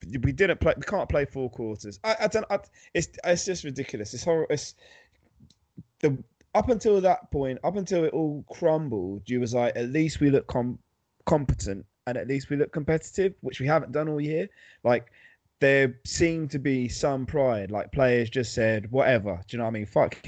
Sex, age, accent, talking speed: male, 20-39, British, 205 wpm